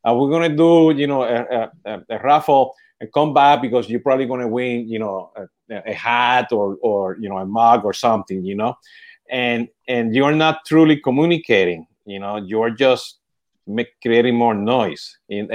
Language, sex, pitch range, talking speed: Spanish, male, 120-180 Hz, 195 wpm